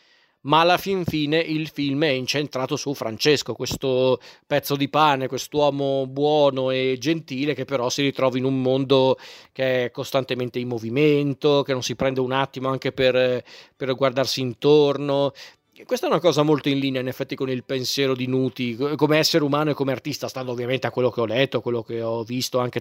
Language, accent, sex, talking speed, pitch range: Italian, native, male, 190 wpm, 130-150 Hz